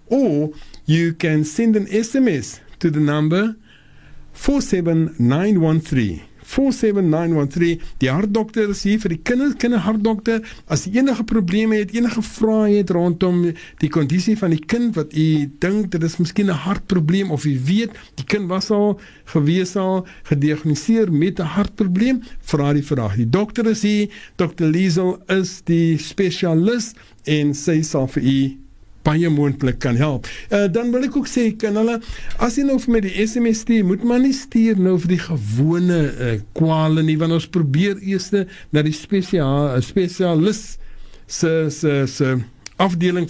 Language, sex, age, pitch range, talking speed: English, male, 50-69, 150-215 Hz, 160 wpm